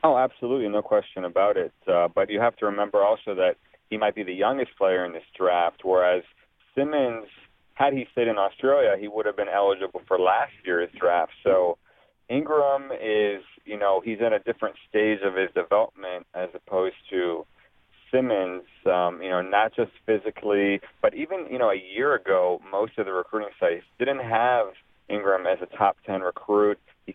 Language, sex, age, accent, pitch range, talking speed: English, male, 40-59, American, 95-115 Hz, 185 wpm